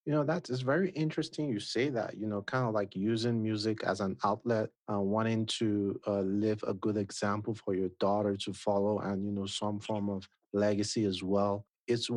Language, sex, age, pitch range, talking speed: English, male, 30-49, 100-115 Hz, 205 wpm